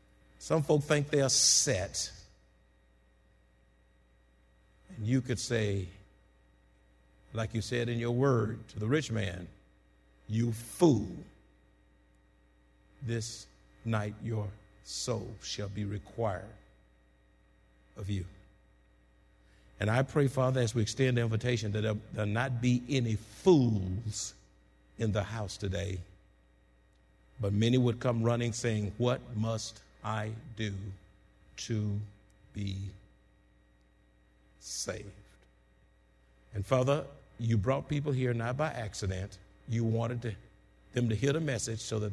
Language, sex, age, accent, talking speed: English, male, 50-69, American, 115 wpm